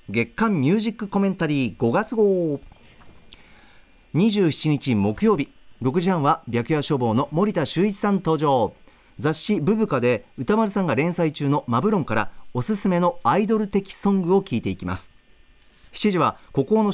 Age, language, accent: 40-59, Japanese, native